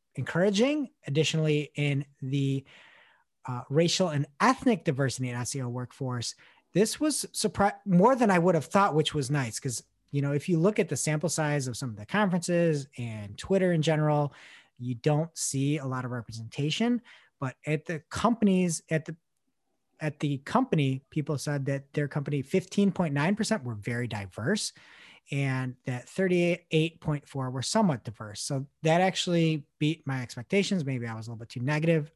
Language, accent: English, American